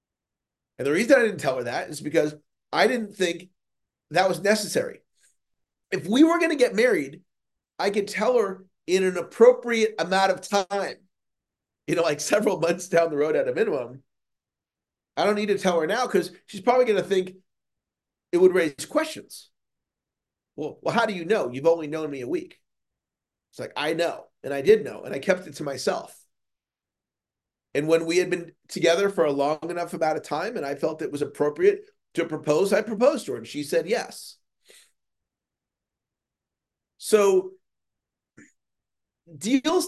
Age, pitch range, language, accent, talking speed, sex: 40-59, 165-220 Hz, English, American, 180 wpm, male